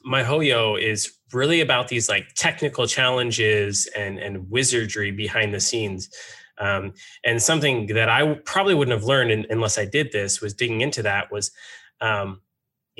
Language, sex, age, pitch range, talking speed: English, male, 20-39, 105-130 Hz, 155 wpm